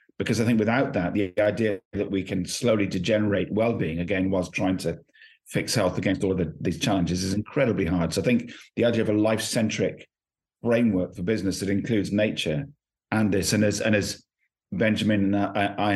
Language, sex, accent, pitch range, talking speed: English, male, British, 95-110 Hz, 195 wpm